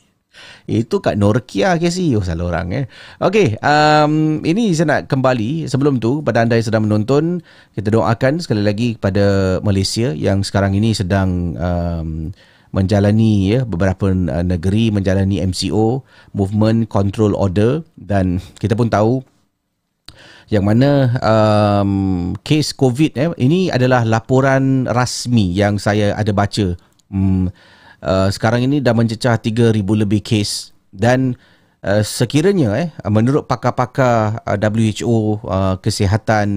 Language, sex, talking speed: Malay, male, 130 wpm